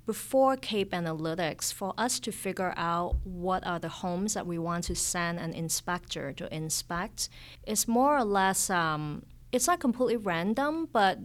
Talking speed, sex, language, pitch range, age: 165 wpm, female, English, 165-200 Hz, 30-49